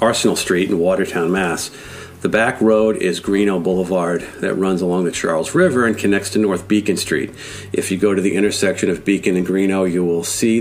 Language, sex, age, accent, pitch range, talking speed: English, male, 50-69, American, 90-105 Hz, 205 wpm